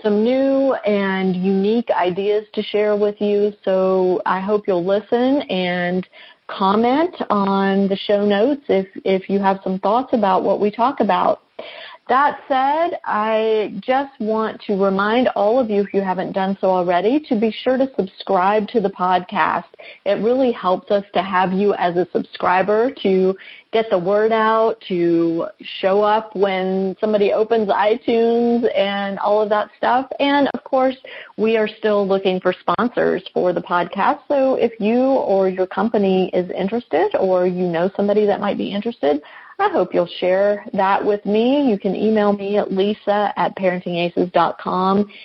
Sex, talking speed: female, 165 wpm